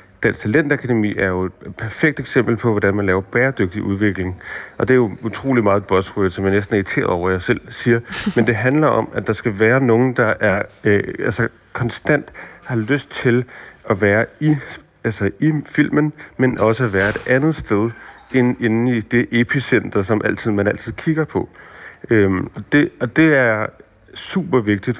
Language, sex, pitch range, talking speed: Danish, male, 105-125 Hz, 185 wpm